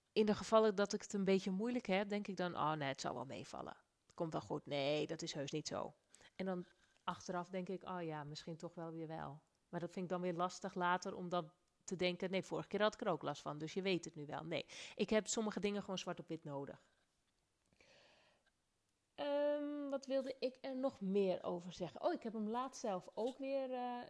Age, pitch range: 30-49, 180-220 Hz